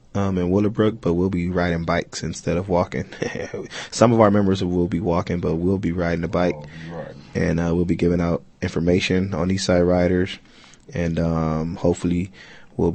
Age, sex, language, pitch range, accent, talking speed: 20-39, male, English, 85-95 Hz, American, 180 wpm